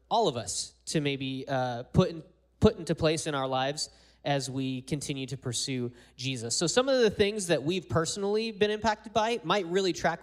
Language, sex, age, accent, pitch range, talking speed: English, male, 20-39, American, 140-180 Hz, 200 wpm